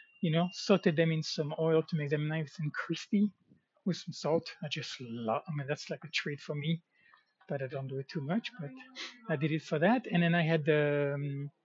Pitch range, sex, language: 150-195 Hz, male, English